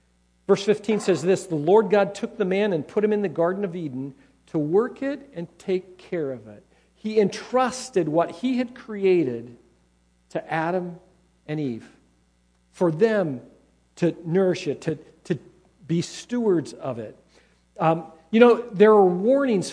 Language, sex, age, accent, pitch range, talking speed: English, male, 50-69, American, 160-215 Hz, 160 wpm